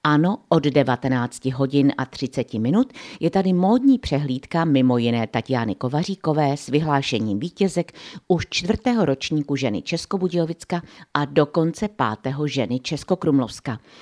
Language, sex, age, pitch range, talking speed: Czech, female, 50-69, 130-180 Hz, 120 wpm